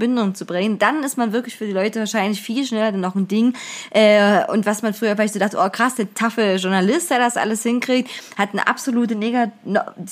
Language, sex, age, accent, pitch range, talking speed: German, female, 20-39, German, 200-240 Hz, 215 wpm